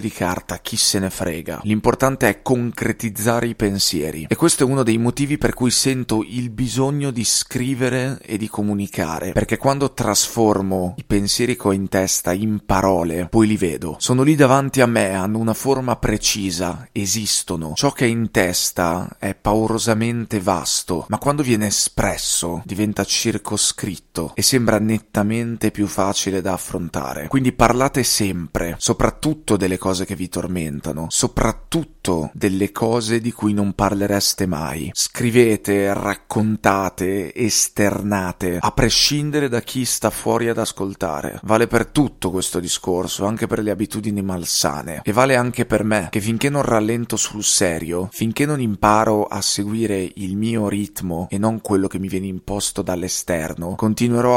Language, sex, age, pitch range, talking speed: Italian, male, 30-49, 95-120 Hz, 150 wpm